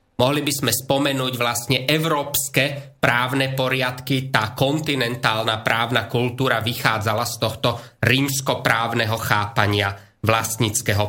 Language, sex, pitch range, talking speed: Slovak, male, 120-145 Hz, 95 wpm